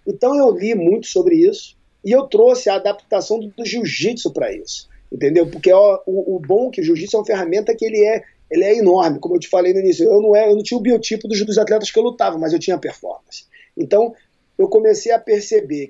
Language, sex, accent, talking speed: Portuguese, male, Brazilian, 225 wpm